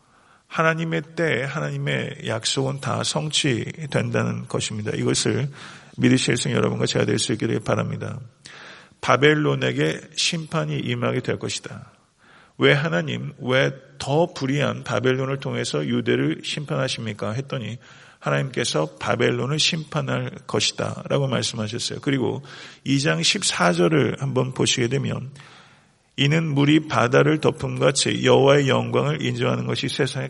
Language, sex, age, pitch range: Korean, male, 40-59, 110-145 Hz